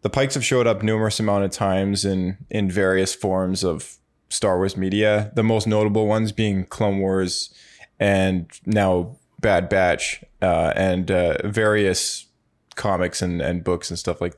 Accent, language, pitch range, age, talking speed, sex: American, English, 95-105 Hz, 20-39, 165 wpm, male